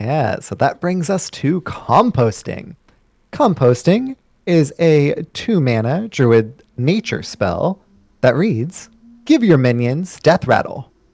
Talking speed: 120 wpm